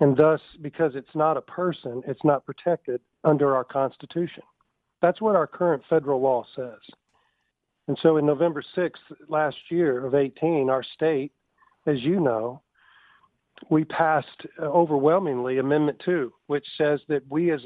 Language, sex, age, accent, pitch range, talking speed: English, male, 50-69, American, 140-170 Hz, 150 wpm